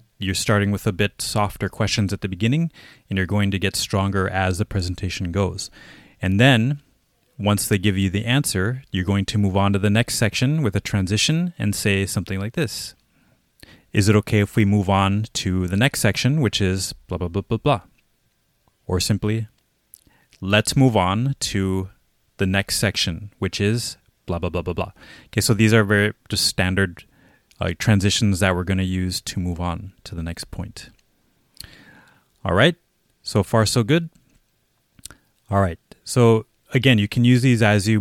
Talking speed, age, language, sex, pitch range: 185 wpm, 30-49, English, male, 95-115 Hz